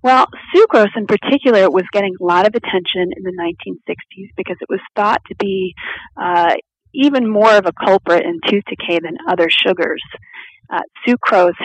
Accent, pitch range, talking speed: American, 170-210 Hz, 170 wpm